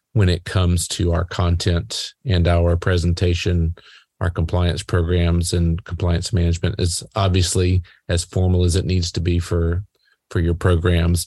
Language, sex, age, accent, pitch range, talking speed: English, male, 40-59, American, 85-105 Hz, 150 wpm